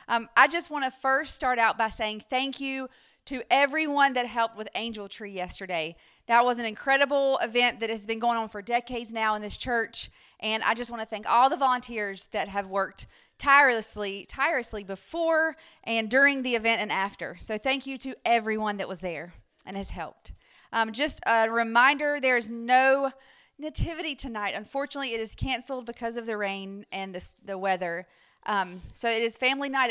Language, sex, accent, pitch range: English, female, American, 220-270 Hz